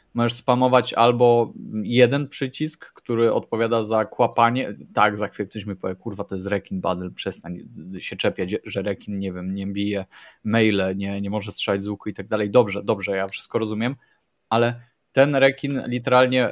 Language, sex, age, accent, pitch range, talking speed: Polish, male, 20-39, native, 105-130 Hz, 165 wpm